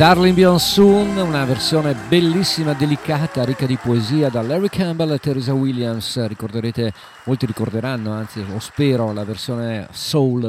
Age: 50-69